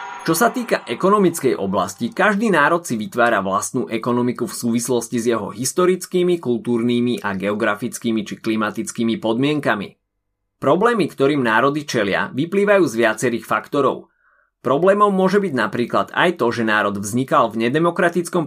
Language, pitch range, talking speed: Slovak, 115-175 Hz, 135 wpm